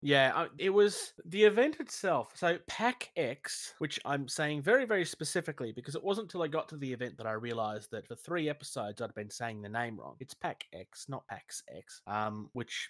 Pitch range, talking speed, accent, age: 120-175 Hz, 210 wpm, Australian, 30-49